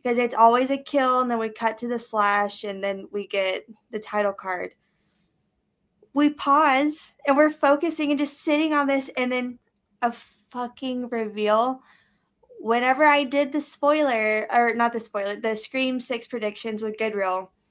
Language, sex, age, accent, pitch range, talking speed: English, female, 20-39, American, 210-260 Hz, 165 wpm